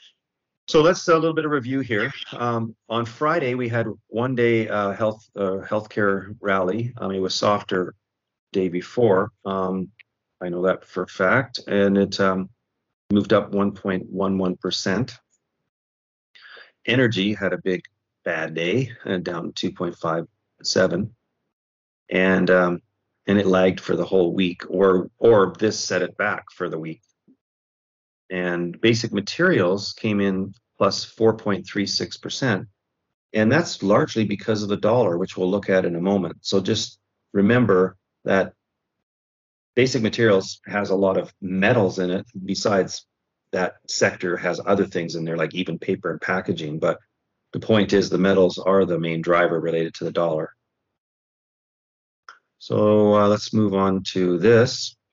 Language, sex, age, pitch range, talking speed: English, male, 40-59, 95-110 Hz, 145 wpm